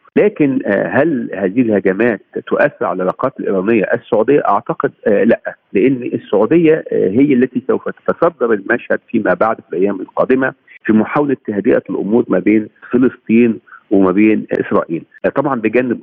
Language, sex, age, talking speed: Arabic, male, 50-69, 130 wpm